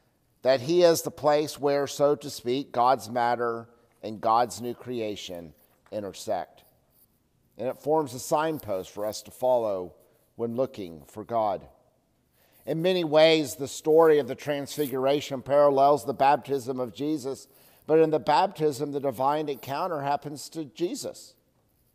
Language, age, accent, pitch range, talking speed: English, 50-69, American, 115-145 Hz, 140 wpm